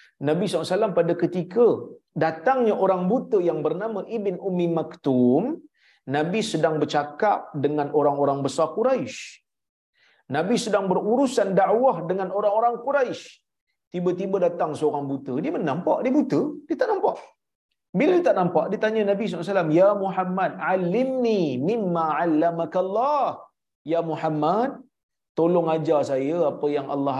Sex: male